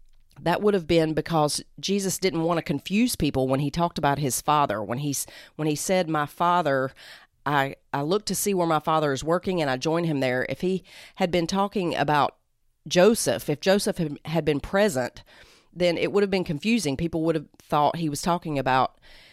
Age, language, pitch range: 40-59, English, 140-170 Hz